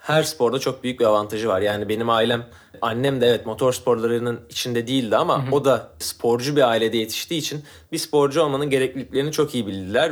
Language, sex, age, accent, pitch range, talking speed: Turkish, male, 30-49, native, 120-145 Hz, 190 wpm